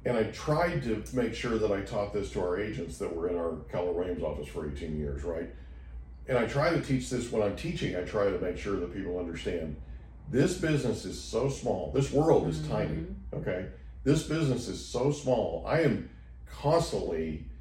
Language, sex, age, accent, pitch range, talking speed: English, male, 50-69, American, 65-110 Hz, 200 wpm